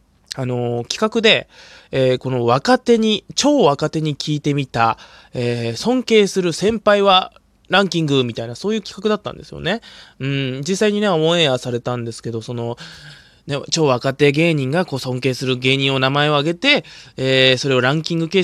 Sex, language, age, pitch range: male, Japanese, 20-39, 120-165 Hz